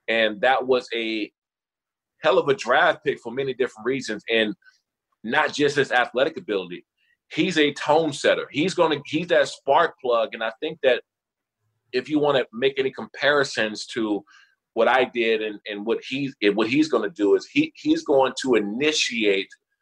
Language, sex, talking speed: English, male, 180 wpm